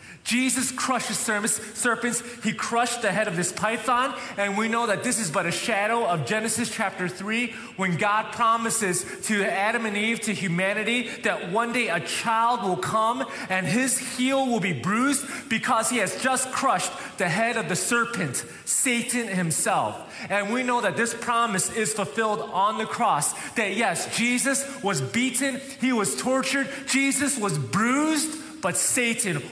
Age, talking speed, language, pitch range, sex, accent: 30-49, 165 wpm, English, 190-240 Hz, male, American